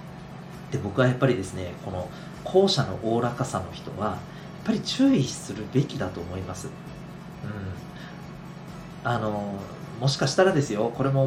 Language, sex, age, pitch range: Japanese, male, 40-59, 120-175 Hz